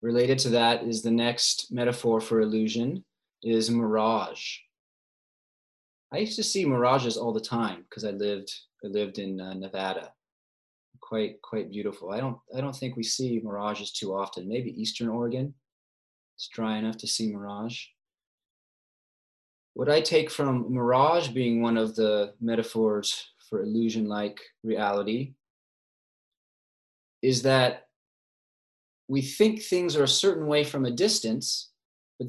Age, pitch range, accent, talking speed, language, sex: 20-39, 110-150 Hz, American, 140 wpm, English, male